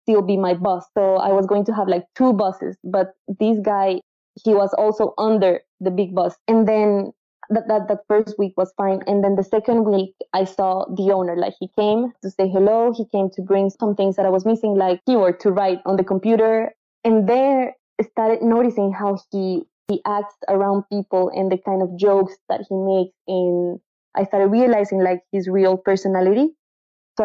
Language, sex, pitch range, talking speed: English, female, 190-225 Hz, 205 wpm